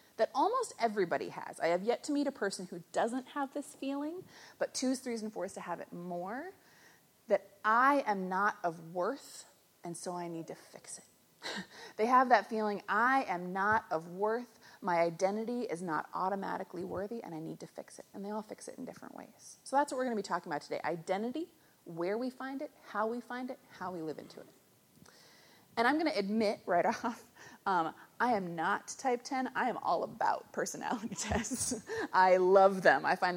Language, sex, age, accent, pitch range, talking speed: English, female, 30-49, American, 185-250 Hz, 205 wpm